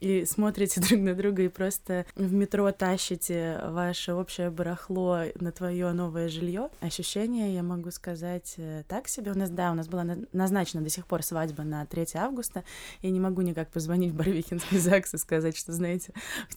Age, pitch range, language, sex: 20-39, 165-195 Hz, Russian, female